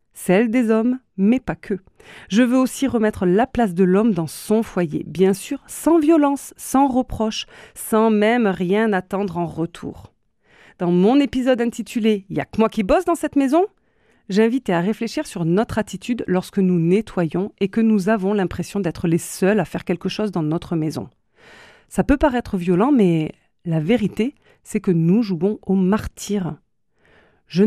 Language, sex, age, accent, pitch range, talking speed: French, female, 40-59, French, 185-235 Hz, 175 wpm